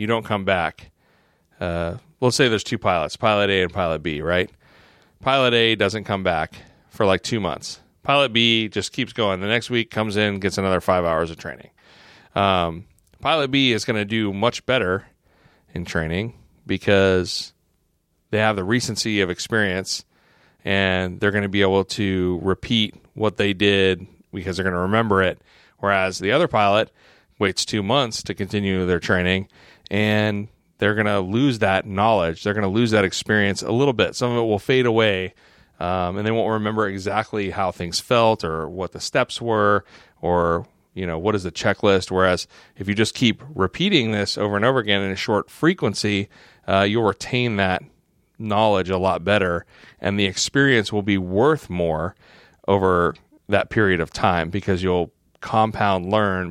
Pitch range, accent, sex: 95-110 Hz, American, male